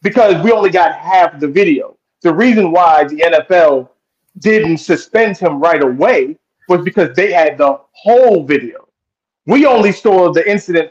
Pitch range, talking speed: 150-205 Hz, 160 wpm